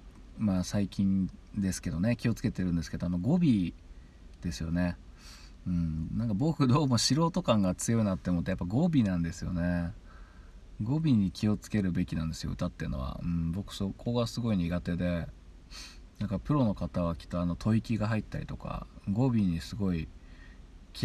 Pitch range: 85-110 Hz